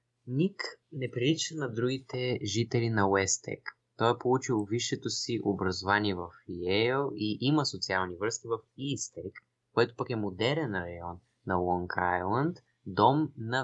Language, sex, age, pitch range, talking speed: Bulgarian, male, 20-39, 100-125 Hz, 140 wpm